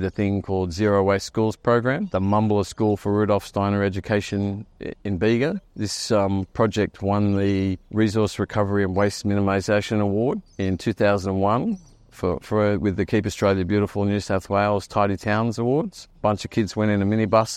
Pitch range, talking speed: 100-115 Hz, 170 wpm